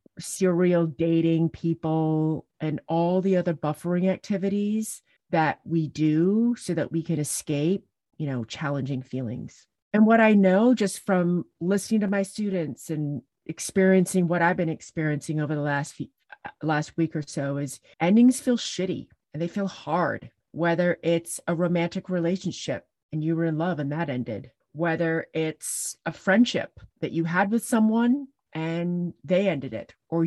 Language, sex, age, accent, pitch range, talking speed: English, female, 40-59, American, 160-190 Hz, 160 wpm